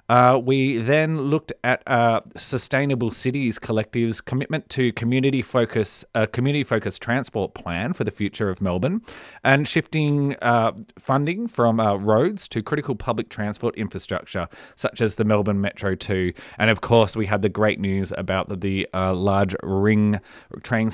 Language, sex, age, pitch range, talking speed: English, male, 30-49, 100-135 Hz, 160 wpm